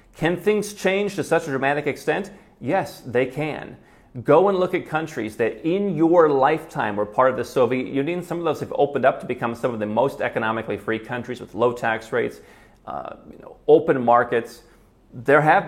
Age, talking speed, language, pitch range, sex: 30-49, 200 wpm, English, 120-190 Hz, male